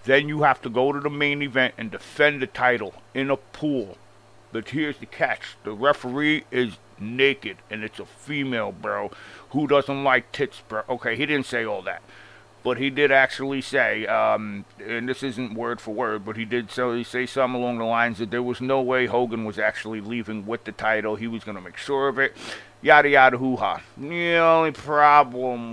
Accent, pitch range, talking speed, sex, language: American, 115-140 Hz, 205 wpm, male, English